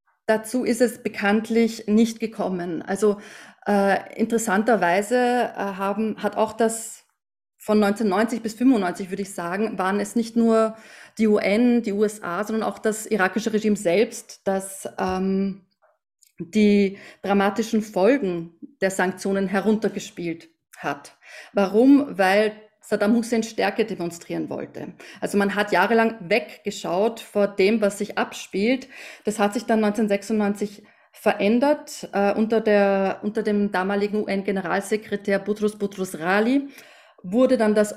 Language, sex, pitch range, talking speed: German, female, 190-220 Hz, 125 wpm